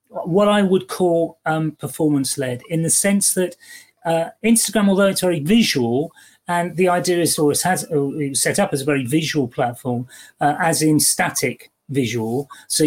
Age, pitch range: 30-49, 140-195 Hz